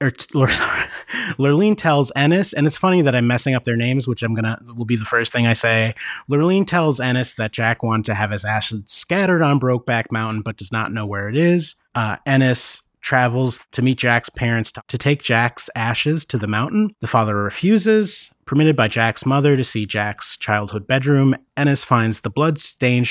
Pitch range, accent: 110-140 Hz, American